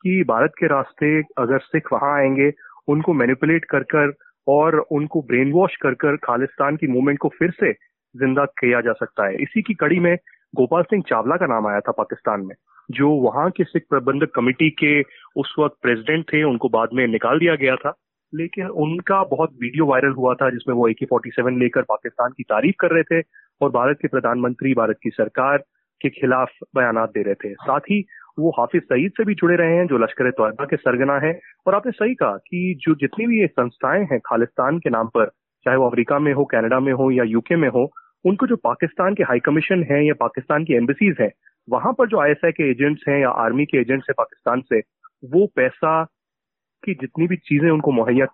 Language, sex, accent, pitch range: Hindi, male, native, 130-170 Hz